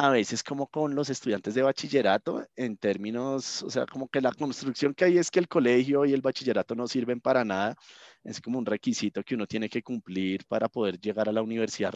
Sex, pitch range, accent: male, 100-130 Hz, Colombian